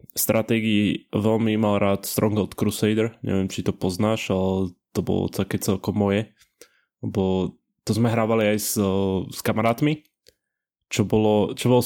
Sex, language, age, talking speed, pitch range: male, Slovak, 20-39, 135 wpm, 110-135 Hz